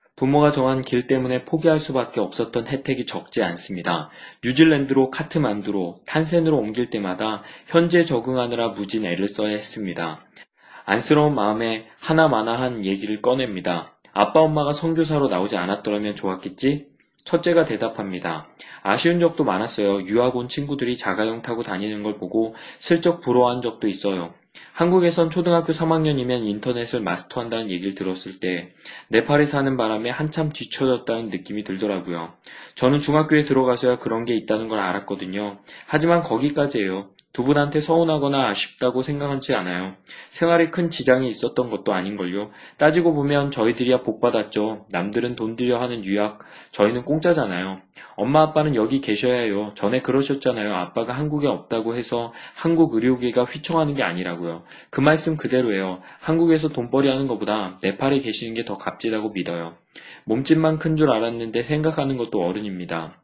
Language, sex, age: Korean, male, 20-39